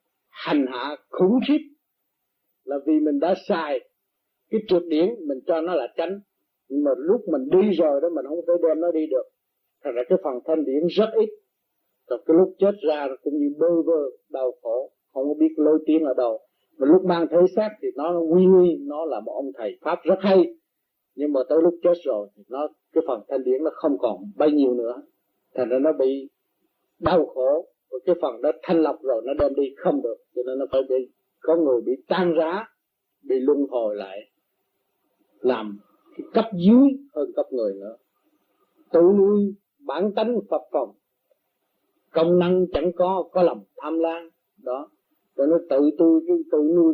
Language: Vietnamese